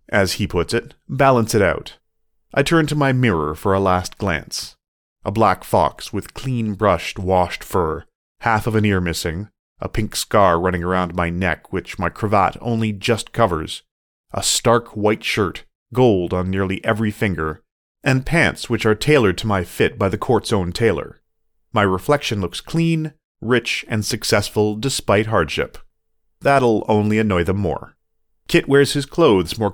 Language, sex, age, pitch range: English, male, 30-49, 90-115 Hz